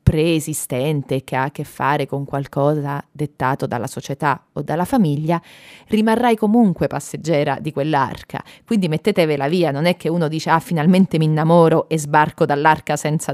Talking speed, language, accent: 160 wpm, Italian, native